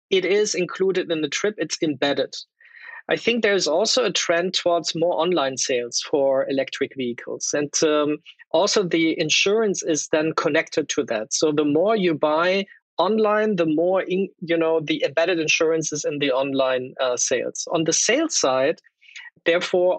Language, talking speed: English, 170 wpm